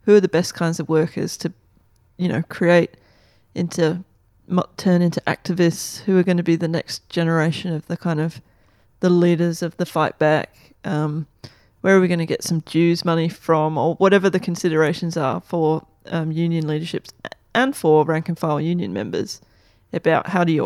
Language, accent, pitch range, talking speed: English, Australian, 155-180 Hz, 185 wpm